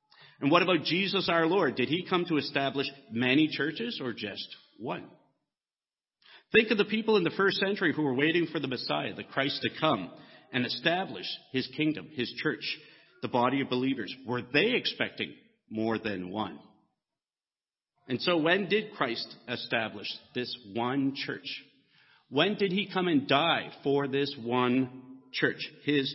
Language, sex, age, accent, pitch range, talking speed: English, male, 50-69, American, 120-150 Hz, 160 wpm